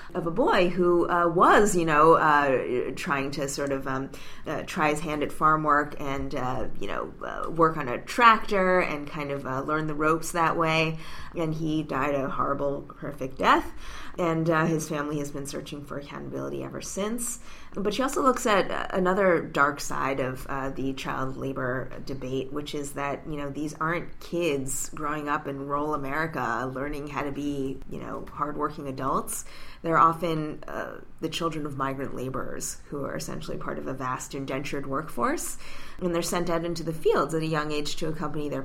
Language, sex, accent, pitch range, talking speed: English, female, American, 140-170 Hz, 190 wpm